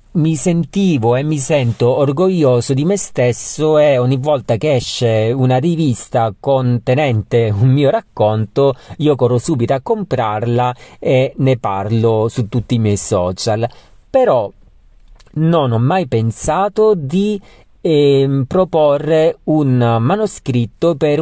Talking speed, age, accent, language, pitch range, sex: 125 wpm, 40-59, native, Italian, 115-160 Hz, male